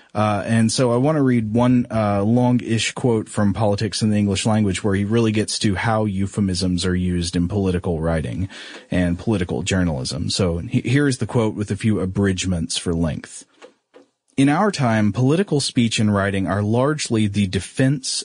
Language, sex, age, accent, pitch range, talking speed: English, male, 30-49, American, 100-120 Hz, 180 wpm